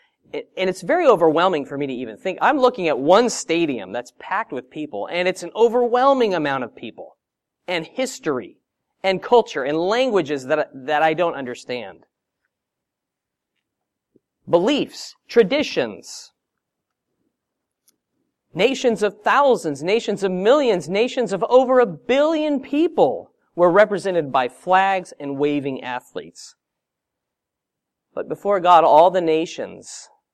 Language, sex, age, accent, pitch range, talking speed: English, male, 40-59, American, 145-225 Hz, 125 wpm